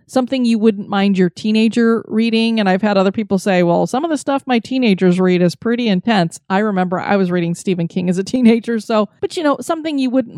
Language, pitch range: English, 195-245 Hz